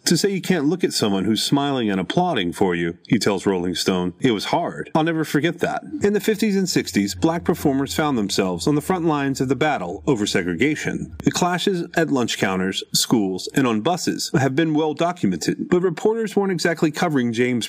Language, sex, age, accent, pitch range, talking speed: English, male, 30-49, American, 140-185 Hz, 205 wpm